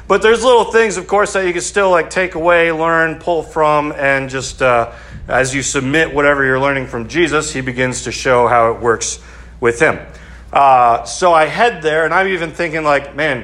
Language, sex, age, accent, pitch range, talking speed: English, male, 40-59, American, 125-165 Hz, 210 wpm